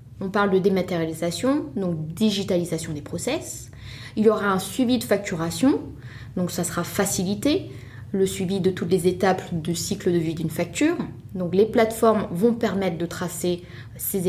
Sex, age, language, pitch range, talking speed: female, 20-39, French, 165-210 Hz, 165 wpm